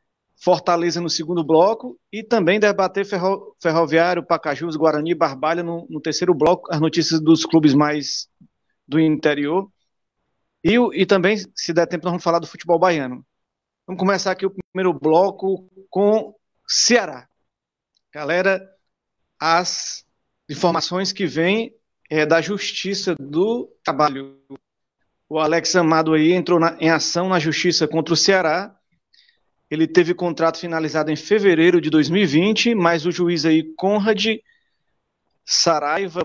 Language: English